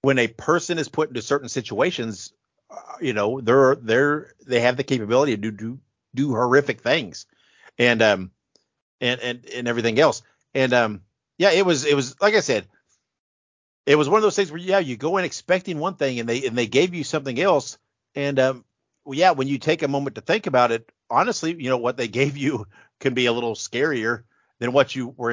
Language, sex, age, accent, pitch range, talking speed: English, male, 50-69, American, 115-140 Hz, 215 wpm